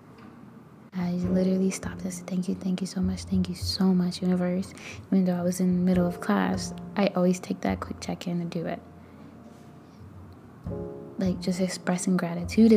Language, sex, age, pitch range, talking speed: English, female, 20-39, 175-195 Hz, 180 wpm